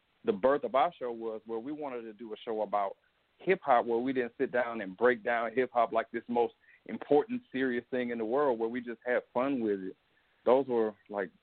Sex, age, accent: male, 40-59, American